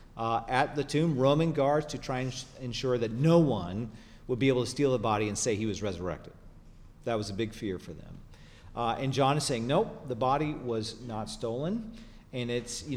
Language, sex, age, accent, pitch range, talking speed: English, male, 40-59, American, 120-155 Hz, 215 wpm